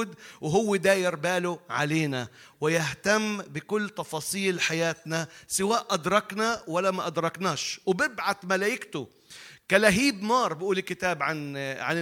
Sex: male